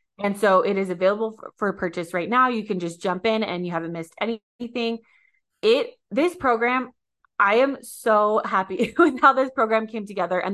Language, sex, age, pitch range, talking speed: English, female, 20-39, 175-225 Hz, 195 wpm